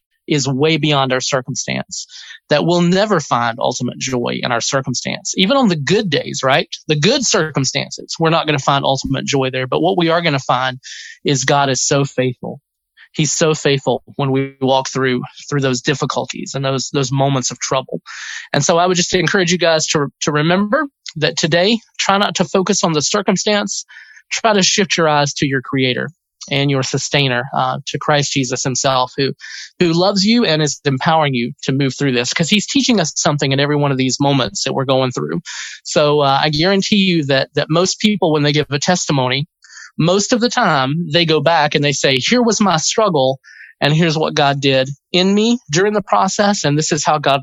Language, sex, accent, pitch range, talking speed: English, male, American, 135-180 Hz, 210 wpm